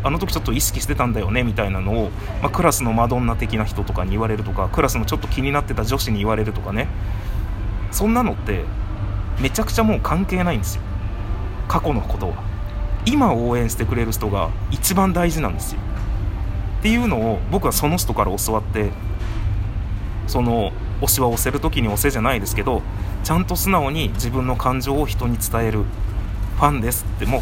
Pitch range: 95-120 Hz